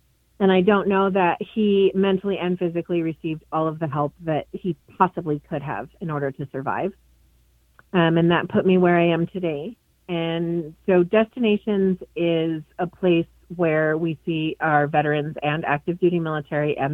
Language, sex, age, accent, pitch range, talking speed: English, female, 30-49, American, 155-185 Hz, 170 wpm